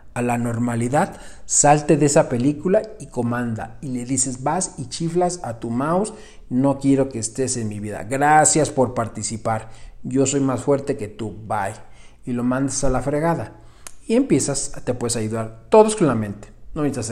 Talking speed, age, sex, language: 180 wpm, 40-59, male, Spanish